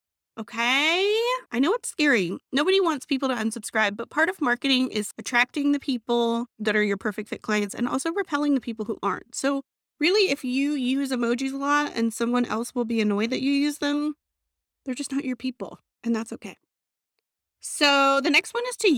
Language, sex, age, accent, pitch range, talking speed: English, female, 30-49, American, 215-280 Hz, 200 wpm